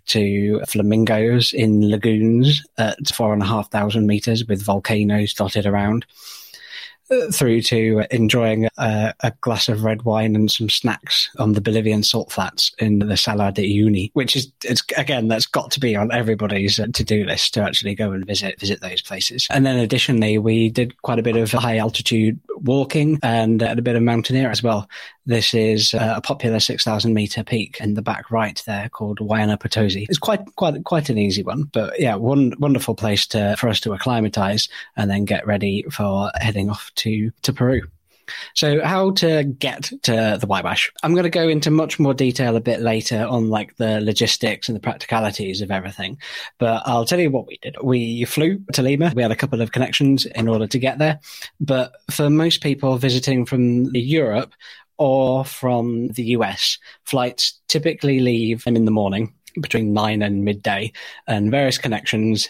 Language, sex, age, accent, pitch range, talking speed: English, male, 20-39, British, 105-130 Hz, 190 wpm